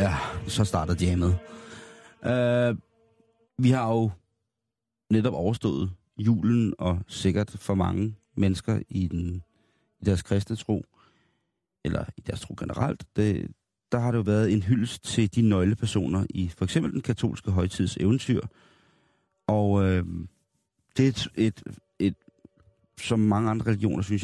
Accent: native